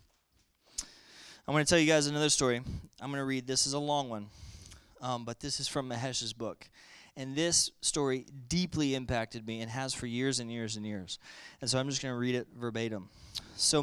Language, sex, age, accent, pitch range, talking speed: English, male, 20-39, American, 120-160 Hz, 210 wpm